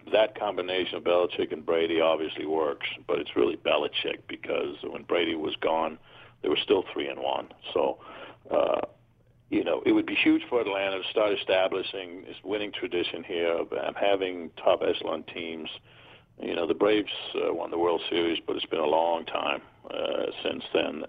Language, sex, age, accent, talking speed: English, male, 50-69, American, 180 wpm